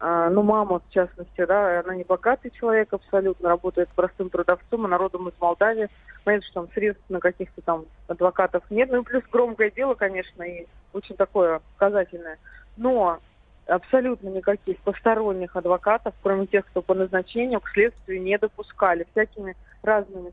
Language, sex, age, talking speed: Russian, female, 20-39, 150 wpm